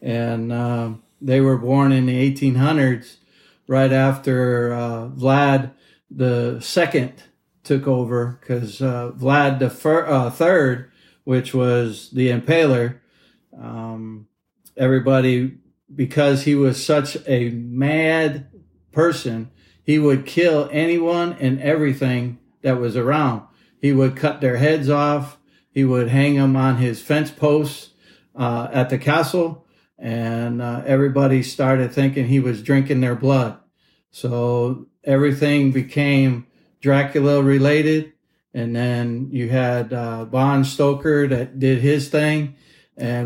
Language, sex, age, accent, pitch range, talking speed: English, male, 50-69, American, 125-145 Hz, 120 wpm